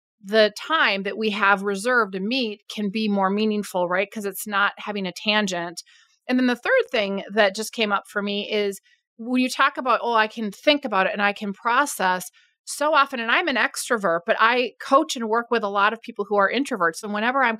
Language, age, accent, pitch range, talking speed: English, 30-49, American, 200-245 Hz, 230 wpm